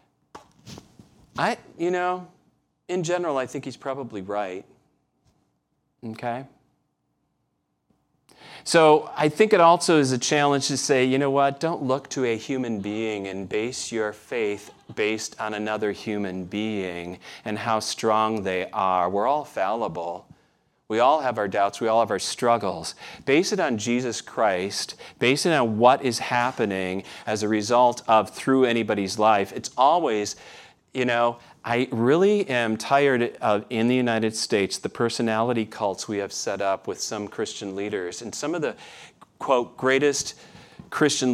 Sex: male